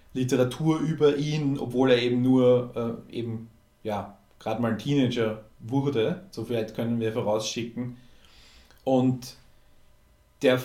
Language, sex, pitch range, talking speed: German, male, 120-135 Hz, 120 wpm